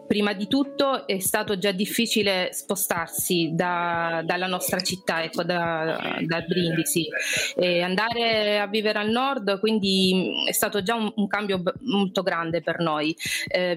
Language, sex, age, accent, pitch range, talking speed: Italian, female, 30-49, native, 180-210 Hz, 155 wpm